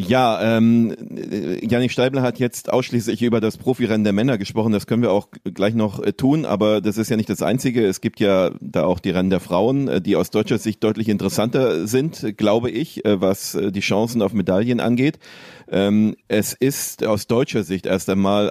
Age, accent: 30-49, German